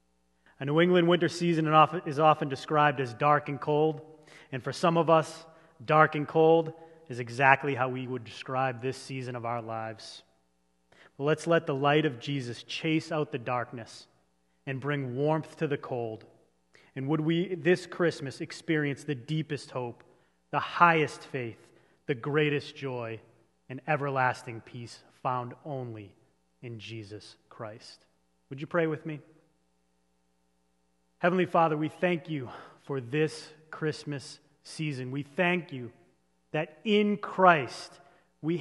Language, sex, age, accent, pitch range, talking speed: English, male, 30-49, American, 120-165 Hz, 140 wpm